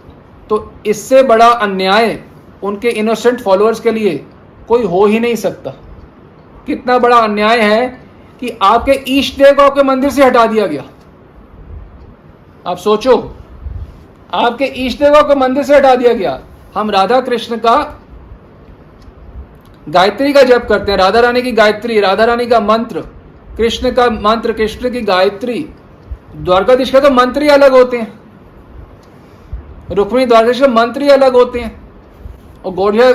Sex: male